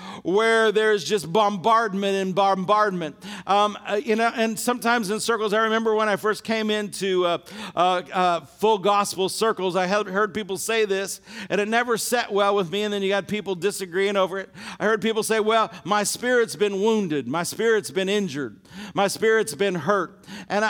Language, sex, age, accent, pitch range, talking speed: English, male, 50-69, American, 190-225 Hz, 190 wpm